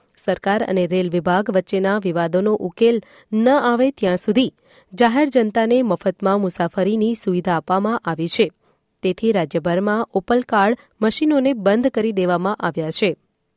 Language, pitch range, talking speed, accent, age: Gujarati, 180-235 Hz, 130 wpm, native, 30-49